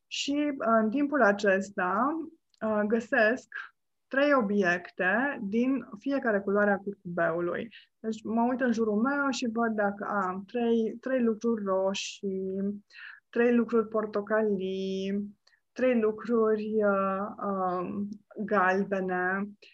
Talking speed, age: 105 wpm, 20-39